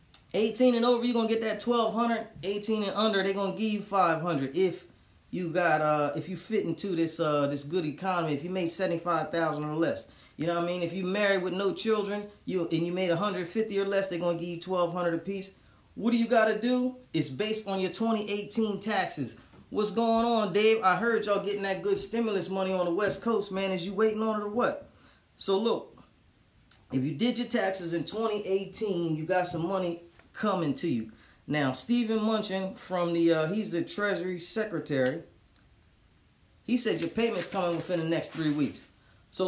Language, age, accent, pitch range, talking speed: English, 20-39, American, 175-220 Hz, 205 wpm